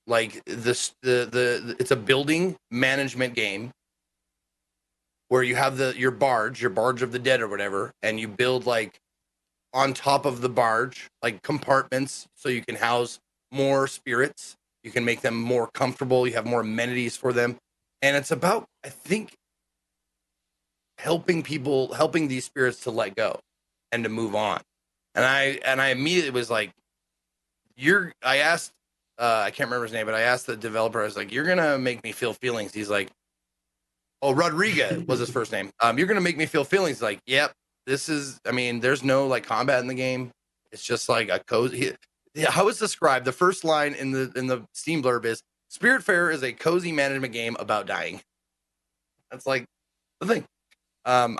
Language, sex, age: English, male, 30-49